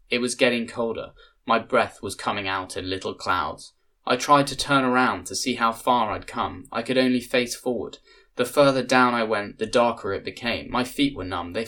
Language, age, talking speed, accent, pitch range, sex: English, 10-29, 215 wpm, British, 95-125 Hz, male